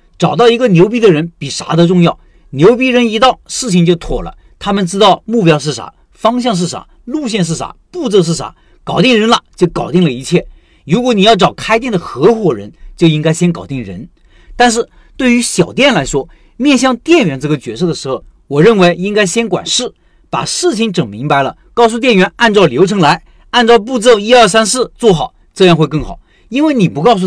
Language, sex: Chinese, male